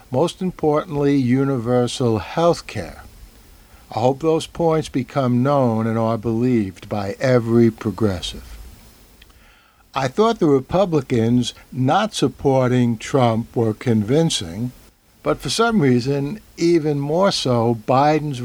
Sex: male